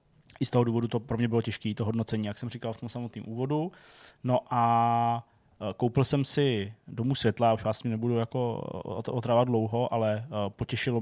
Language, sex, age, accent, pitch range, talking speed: Czech, male, 20-39, native, 115-130 Hz, 185 wpm